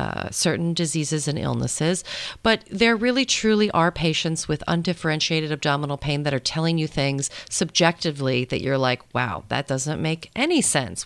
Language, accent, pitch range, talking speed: English, American, 145-190 Hz, 165 wpm